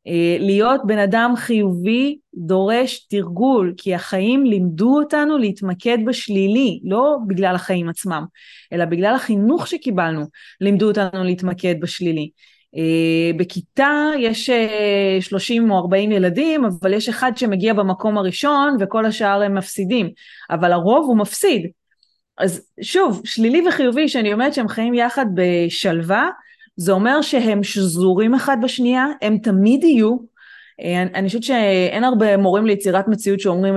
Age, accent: 30-49, native